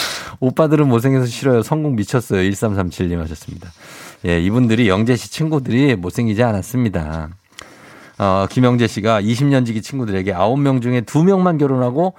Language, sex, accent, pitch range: Korean, male, native, 100-145 Hz